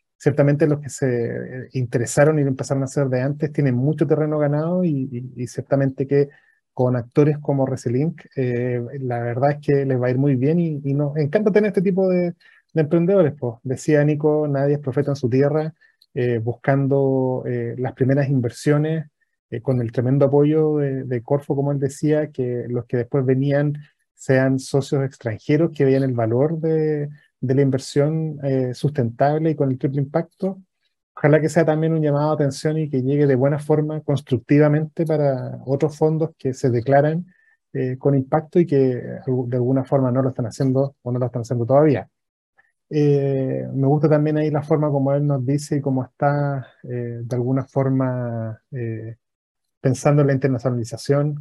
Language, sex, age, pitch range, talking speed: Spanish, male, 30-49, 130-150 Hz, 180 wpm